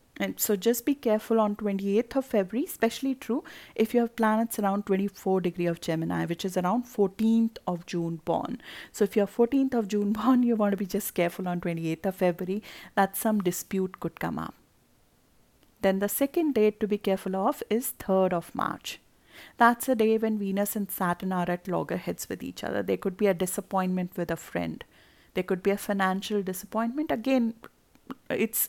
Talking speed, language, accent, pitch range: 190 wpm, English, Indian, 185-225 Hz